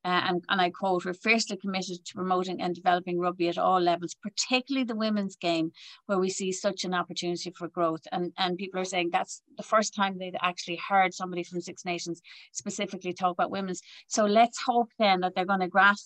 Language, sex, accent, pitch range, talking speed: English, female, Irish, 180-210 Hz, 210 wpm